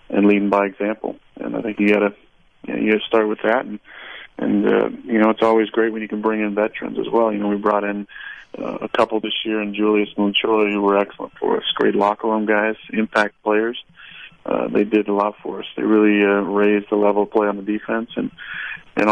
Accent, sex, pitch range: American, male, 100-110 Hz